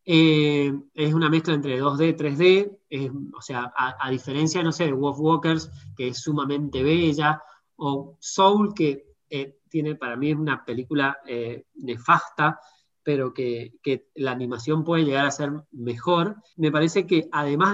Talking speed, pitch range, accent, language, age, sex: 165 wpm, 145-200 Hz, Argentinian, Spanish, 30-49, male